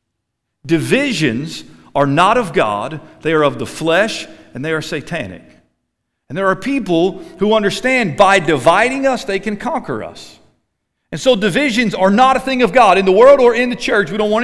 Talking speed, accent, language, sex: 190 wpm, American, English, male